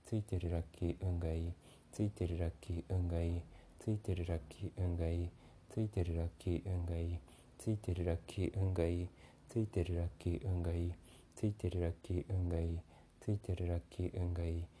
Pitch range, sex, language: 85-95 Hz, male, Japanese